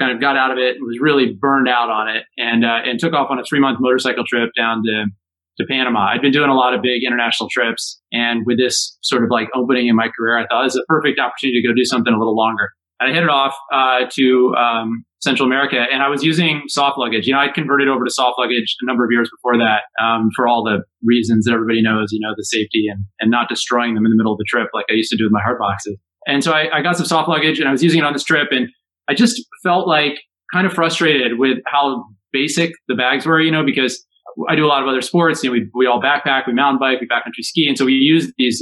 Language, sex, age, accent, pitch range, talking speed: English, male, 30-49, American, 115-140 Hz, 275 wpm